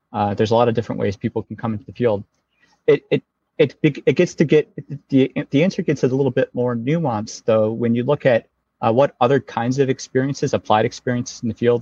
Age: 30-49